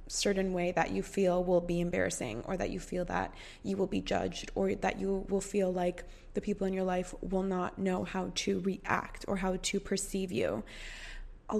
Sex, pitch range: female, 195-245 Hz